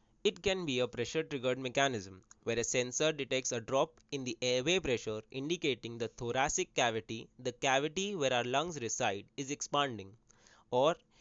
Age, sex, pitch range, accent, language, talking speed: 20-39, male, 115-155 Hz, Indian, English, 160 wpm